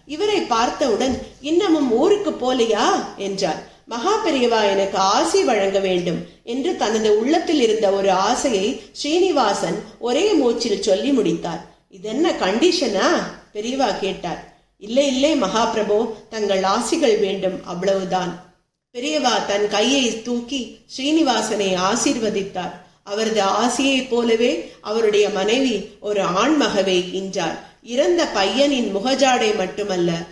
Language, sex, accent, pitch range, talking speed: Tamil, female, native, 195-265 Hz, 95 wpm